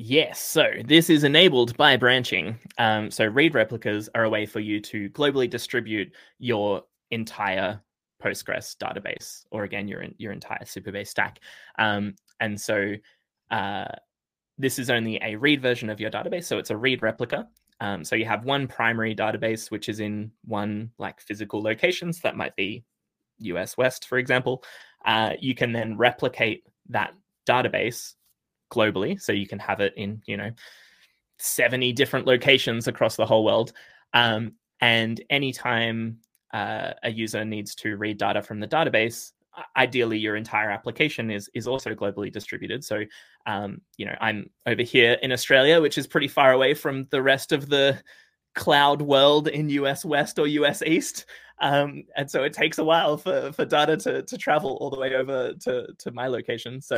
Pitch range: 110-135 Hz